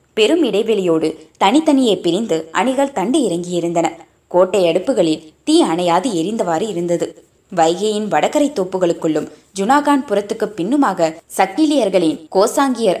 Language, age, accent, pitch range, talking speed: Tamil, 20-39, native, 170-265 Hz, 95 wpm